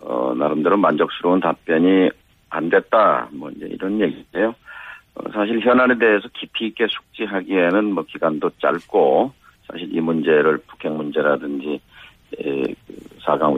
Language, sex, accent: Korean, male, native